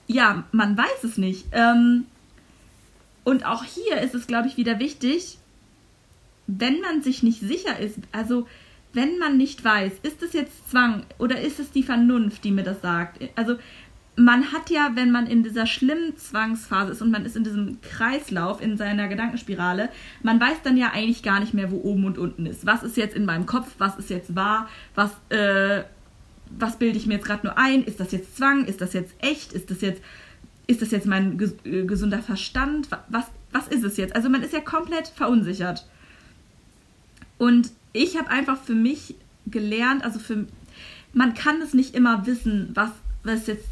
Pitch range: 205-255 Hz